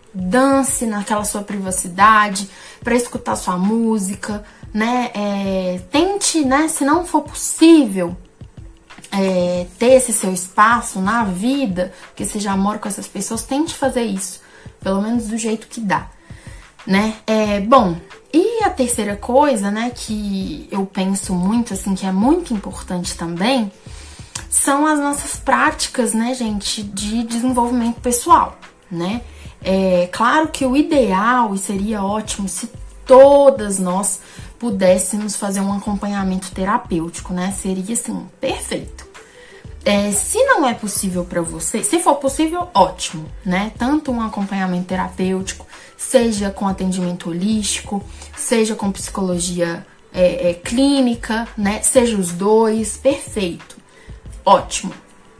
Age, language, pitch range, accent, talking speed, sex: 20-39, Portuguese, 190-250 Hz, Brazilian, 130 wpm, female